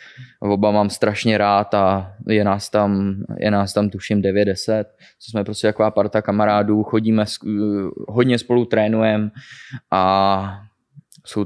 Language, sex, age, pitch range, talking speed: Czech, male, 20-39, 100-110 Hz, 125 wpm